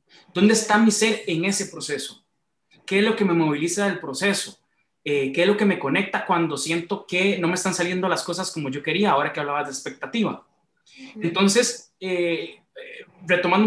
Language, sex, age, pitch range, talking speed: Spanish, male, 30-49, 160-205 Hz, 180 wpm